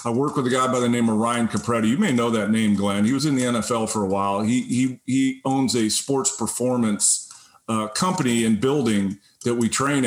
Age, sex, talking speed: 40-59, male, 230 wpm